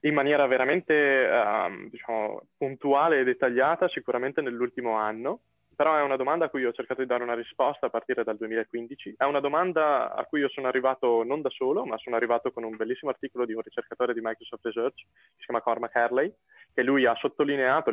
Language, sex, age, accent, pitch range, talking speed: Italian, male, 20-39, native, 115-145 Hz, 200 wpm